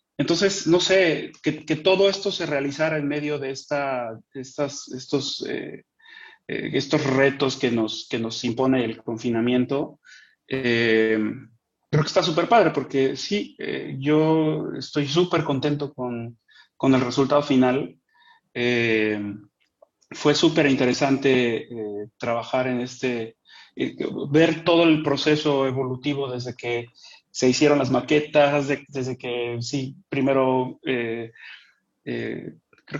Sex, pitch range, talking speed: male, 125-160 Hz, 125 wpm